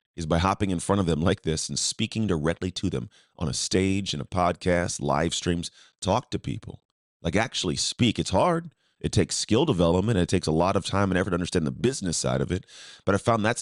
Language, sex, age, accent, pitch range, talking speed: English, male, 30-49, American, 80-100 Hz, 240 wpm